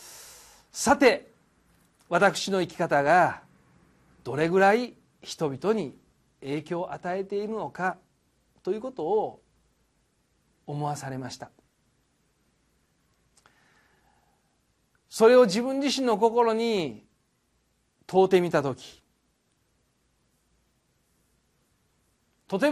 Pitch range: 140-225 Hz